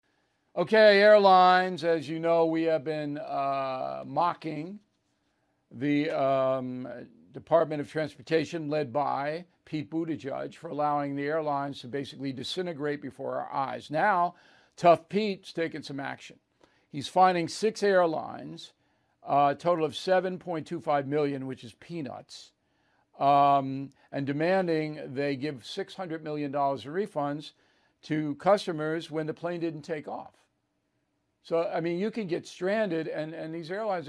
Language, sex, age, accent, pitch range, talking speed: English, male, 50-69, American, 145-175 Hz, 145 wpm